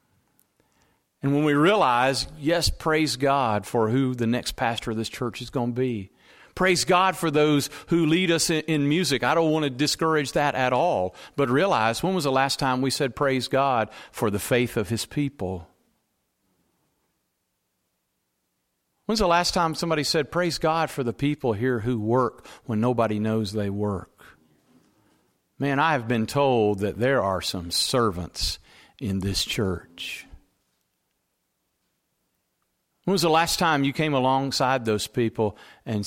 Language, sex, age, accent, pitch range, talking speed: English, male, 50-69, American, 110-145 Hz, 160 wpm